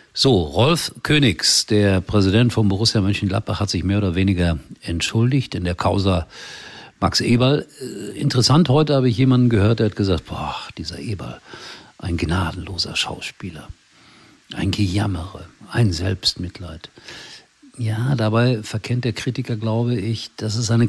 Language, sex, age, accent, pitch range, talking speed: German, male, 50-69, German, 95-125 Hz, 140 wpm